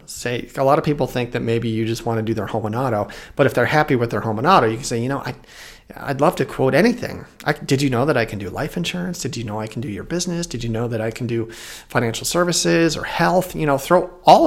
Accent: American